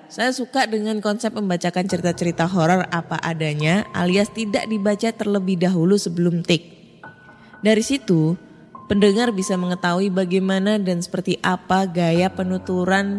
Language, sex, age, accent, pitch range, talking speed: Indonesian, female, 20-39, native, 170-210 Hz, 125 wpm